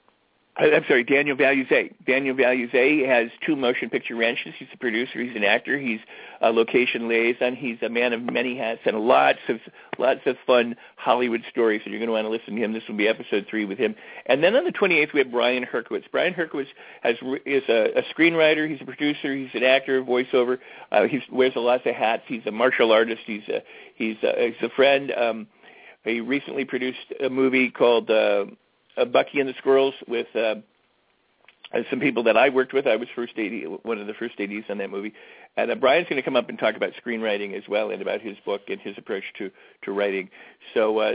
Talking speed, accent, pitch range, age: 220 wpm, American, 115-140 Hz, 50-69